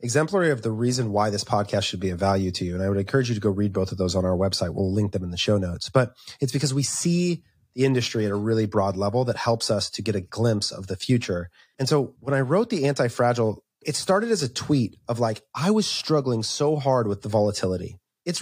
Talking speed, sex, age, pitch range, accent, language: 255 wpm, male, 30-49, 105-140 Hz, American, English